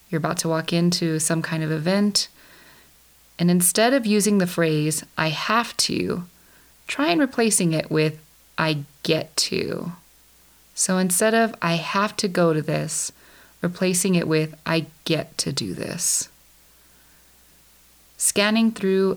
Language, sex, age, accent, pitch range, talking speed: English, female, 30-49, American, 155-200 Hz, 140 wpm